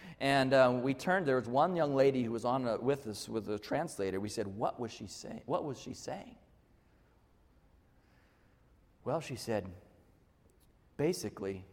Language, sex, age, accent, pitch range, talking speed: English, male, 40-59, American, 110-165 Hz, 165 wpm